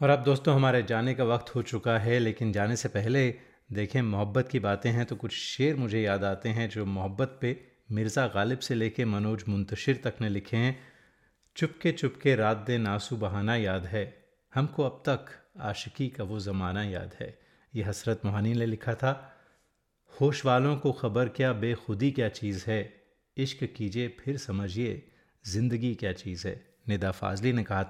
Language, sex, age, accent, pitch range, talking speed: Hindi, male, 30-49, native, 105-130 Hz, 180 wpm